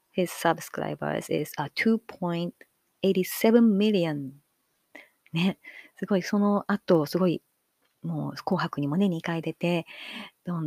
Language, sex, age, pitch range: Japanese, female, 30-49, 160-215 Hz